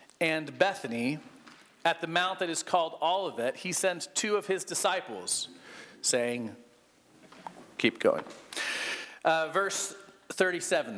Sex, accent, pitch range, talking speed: male, American, 155-200 Hz, 115 wpm